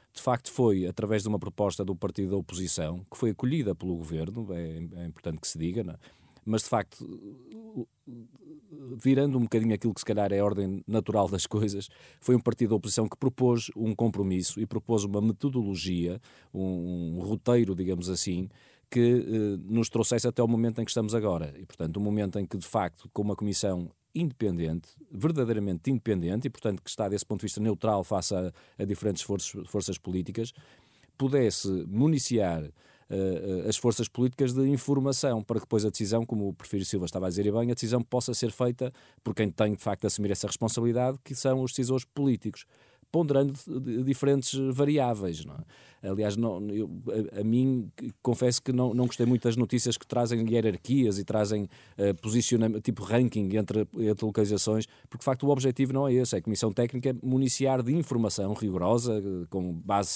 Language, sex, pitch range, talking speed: Portuguese, male, 100-125 Hz, 190 wpm